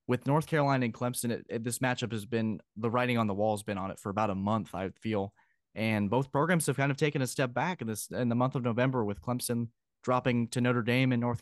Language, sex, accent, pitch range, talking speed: English, male, American, 110-130 Hz, 275 wpm